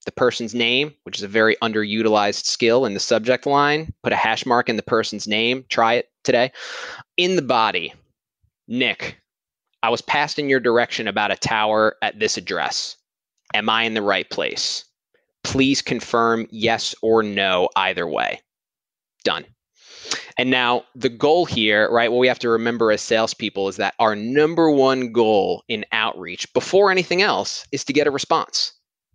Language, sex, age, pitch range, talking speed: English, male, 20-39, 110-150 Hz, 170 wpm